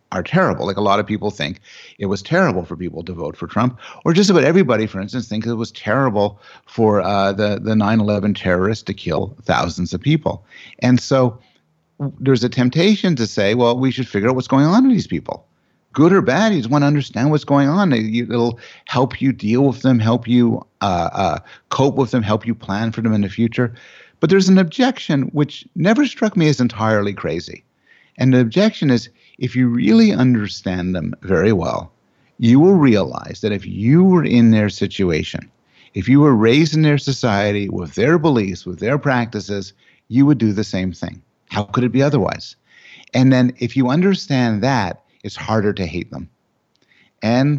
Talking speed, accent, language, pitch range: 195 wpm, American, English, 105-140 Hz